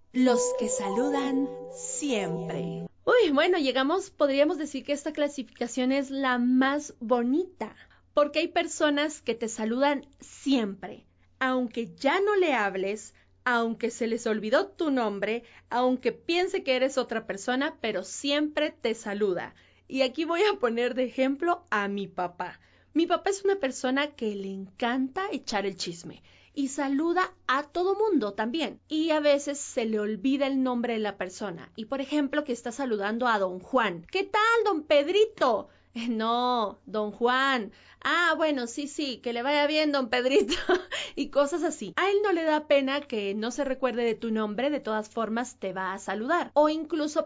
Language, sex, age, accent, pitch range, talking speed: Spanish, female, 30-49, Mexican, 230-300 Hz, 170 wpm